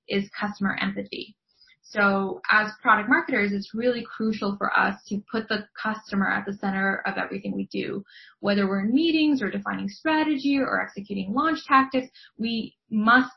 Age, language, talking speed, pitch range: 20-39, English, 160 wpm, 200-240 Hz